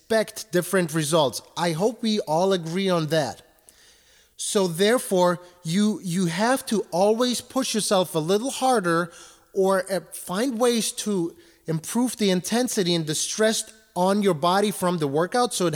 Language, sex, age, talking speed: English, male, 30-49, 150 wpm